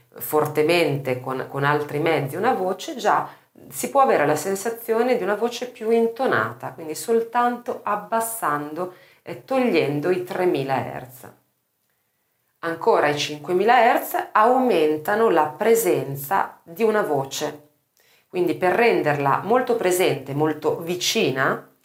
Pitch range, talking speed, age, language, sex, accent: 145-220 Hz, 120 wpm, 40-59, Italian, female, native